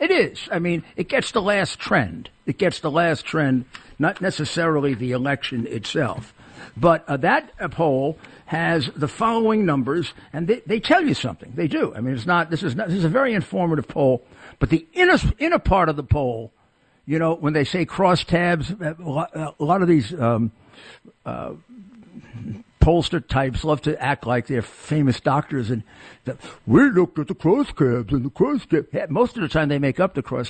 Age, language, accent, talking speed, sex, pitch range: 60-79, English, American, 195 wpm, male, 130-180 Hz